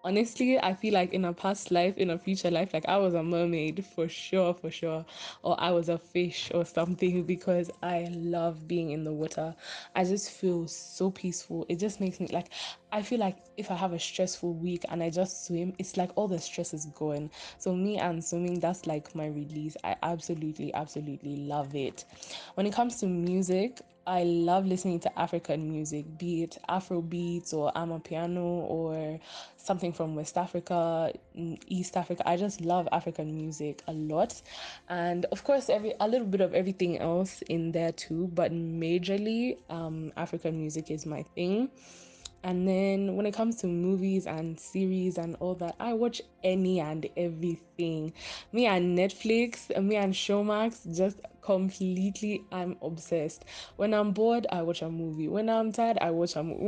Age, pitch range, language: 10-29, 165-190 Hz, English